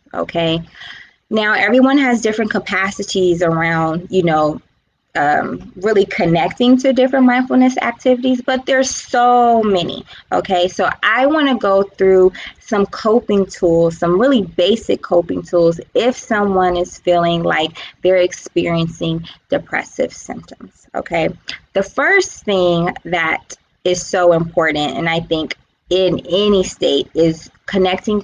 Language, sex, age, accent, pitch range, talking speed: English, female, 20-39, American, 170-205 Hz, 130 wpm